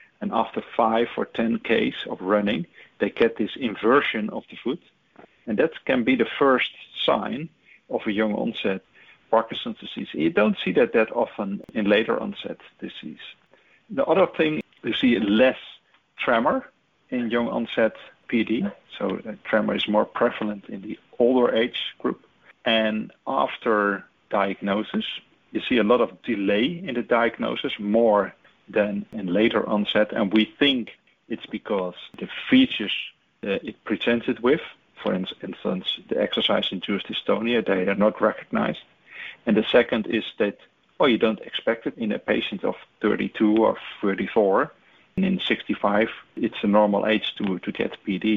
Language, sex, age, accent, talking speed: English, male, 50-69, Dutch, 155 wpm